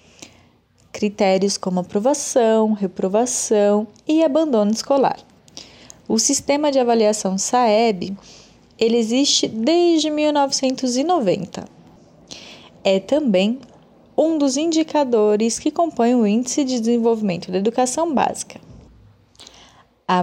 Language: Portuguese